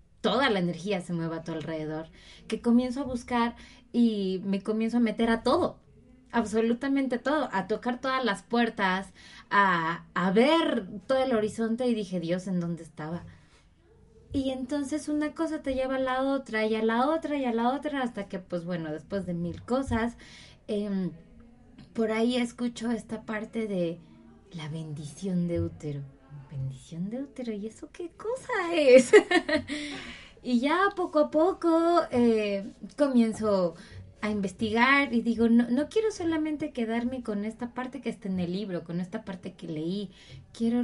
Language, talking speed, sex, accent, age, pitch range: Spanish, 165 wpm, female, Mexican, 20-39, 190-260 Hz